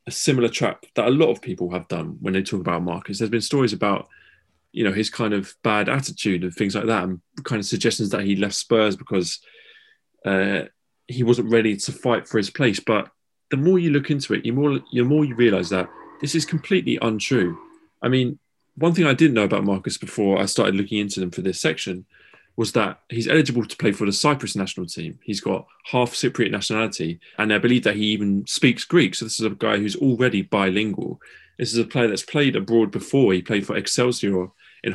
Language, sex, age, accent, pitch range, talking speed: English, male, 20-39, British, 100-125 Hz, 220 wpm